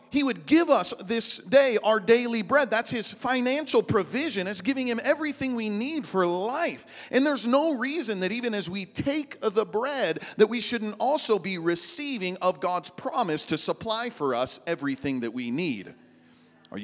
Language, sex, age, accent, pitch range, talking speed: English, male, 40-59, American, 155-230 Hz, 180 wpm